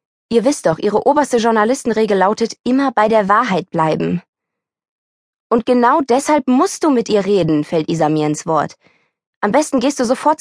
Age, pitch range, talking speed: 20-39, 175-235 Hz, 165 wpm